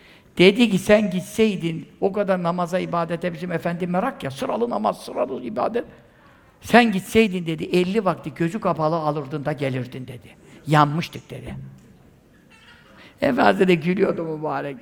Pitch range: 155-215 Hz